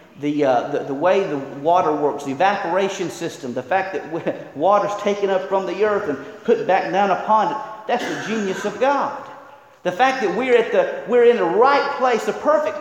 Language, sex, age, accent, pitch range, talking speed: English, male, 40-59, American, 180-250 Hz, 205 wpm